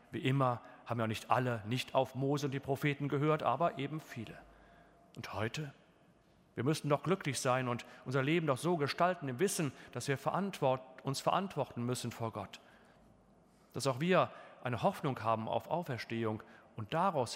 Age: 40-59